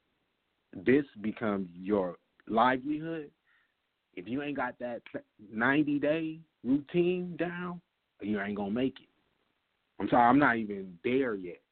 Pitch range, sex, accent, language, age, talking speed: 100-135 Hz, male, American, English, 30-49, 135 wpm